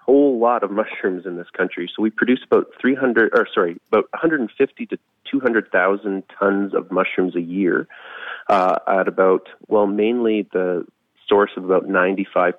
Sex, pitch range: male, 90-100 Hz